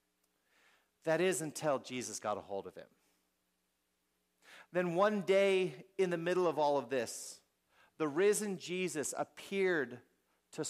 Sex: male